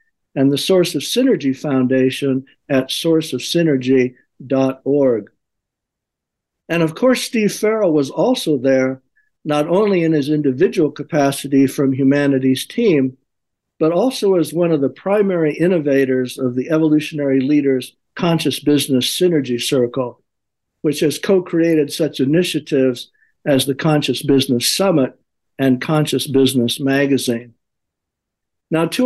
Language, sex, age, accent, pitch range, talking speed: English, male, 60-79, American, 130-165 Hz, 120 wpm